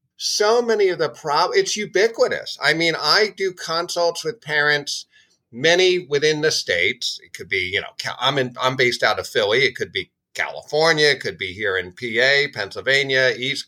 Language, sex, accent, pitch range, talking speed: English, male, American, 130-170 Hz, 180 wpm